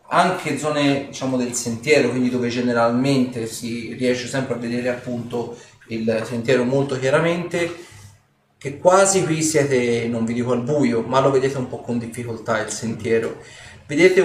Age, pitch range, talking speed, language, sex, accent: 30-49, 120-140 Hz, 155 wpm, Italian, male, native